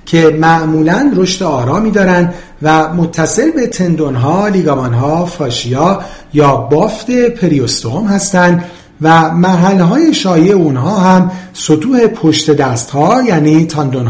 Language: Persian